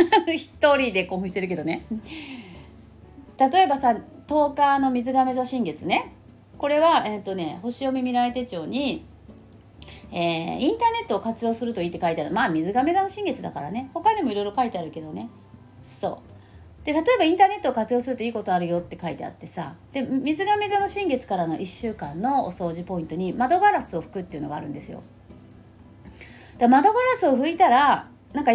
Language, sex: Japanese, female